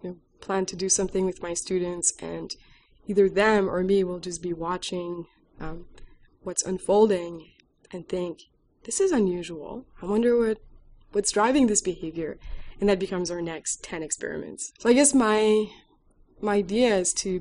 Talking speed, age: 160 wpm, 20-39